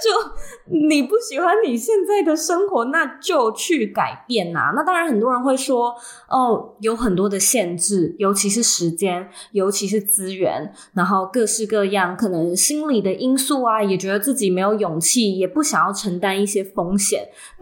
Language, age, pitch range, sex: Chinese, 20-39, 190-255 Hz, female